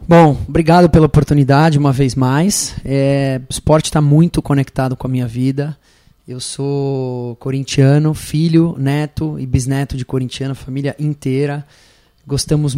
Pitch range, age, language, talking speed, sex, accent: 130-155 Hz, 20-39, Portuguese, 135 wpm, male, Brazilian